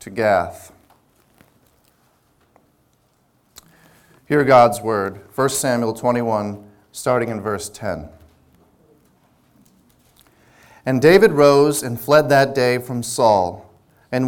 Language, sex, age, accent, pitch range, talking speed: English, male, 40-59, American, 110-145 Hz, 95 wpm